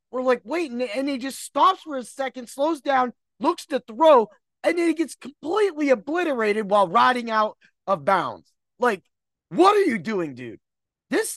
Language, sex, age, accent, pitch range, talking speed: English, male, 30-49, American, 165-245 Hz, 175 wpm